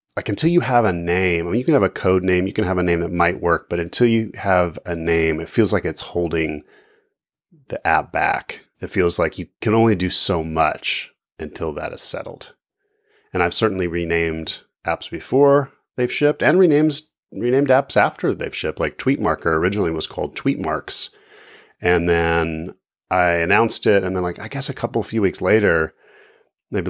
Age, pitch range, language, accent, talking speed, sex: 30-49, 85-120 Hz, English, American, 195 wpm, male